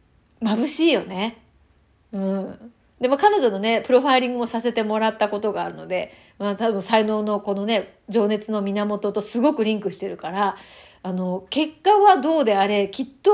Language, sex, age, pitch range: Japanese, female, 30-49, 210-275 Hz